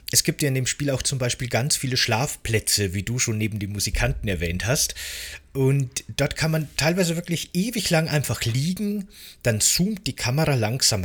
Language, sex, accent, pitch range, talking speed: German, male, German, 105-135 Hz, 190 wpm